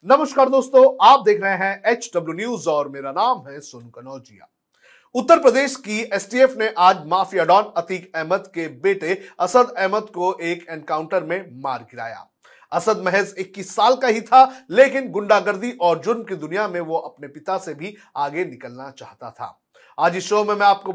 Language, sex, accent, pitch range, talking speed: Hindi, male, native, 165-215 Hz, 180 wpm